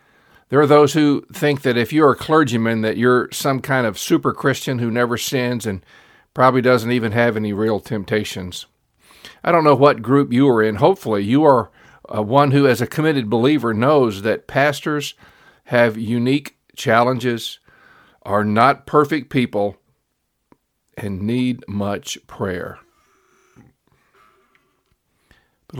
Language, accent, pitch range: English, American, 110-140 Hz